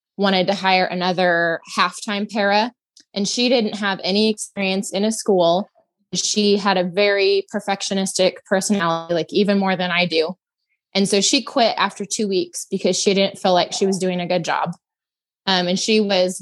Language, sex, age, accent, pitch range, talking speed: English, female, 20-39, American, 185-205 Hz, 180 wpm